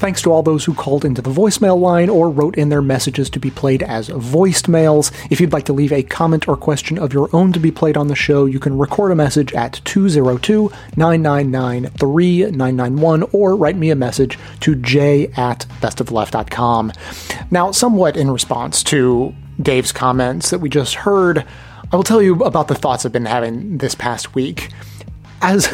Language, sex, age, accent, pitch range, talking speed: English, male, 30-49, American, 130-165 Hz, 185 wpm